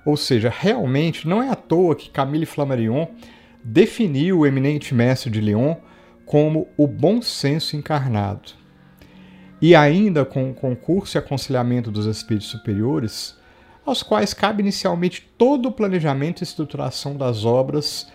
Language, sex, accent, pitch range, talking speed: Portuguese, male, Brazilian, 115-180 Hz, 140 wpm